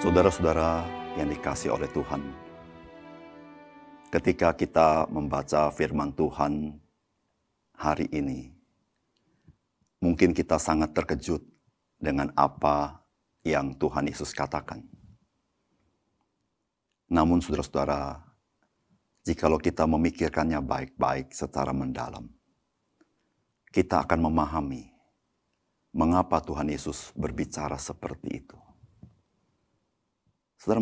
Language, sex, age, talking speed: Indonesian, male, 50-69, 80 wpm